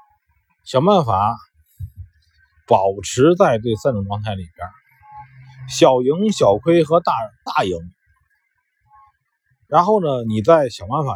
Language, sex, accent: Chinese, male, native